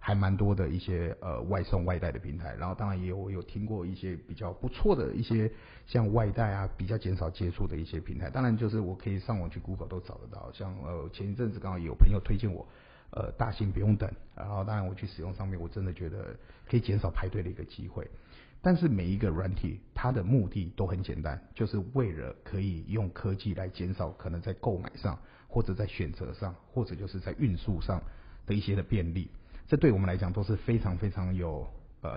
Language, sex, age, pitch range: Chinese, male, 50-69, 90-110 Hz